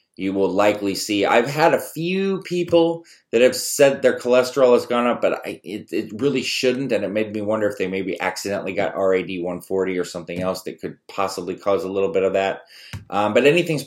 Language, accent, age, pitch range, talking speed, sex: English, American, 30-49, 95-130 Hz, 215 wpm, male